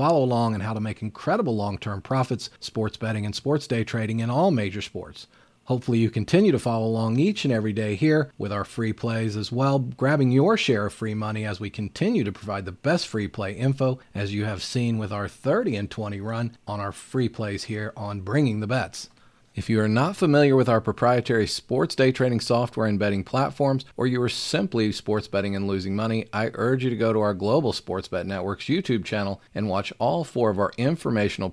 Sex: male